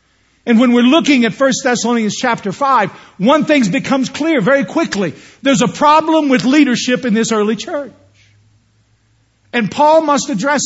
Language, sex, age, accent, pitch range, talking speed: English, male, 50-69, American, 155-260 Hz, 160 wpm